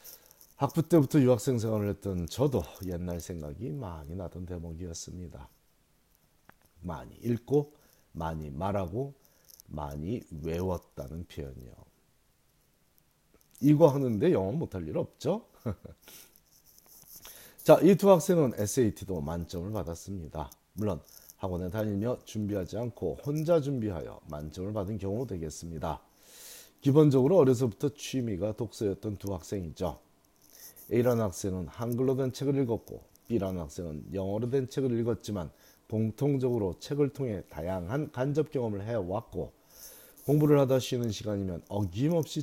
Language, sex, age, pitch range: Korean, male, 40-59, 90-130 Hz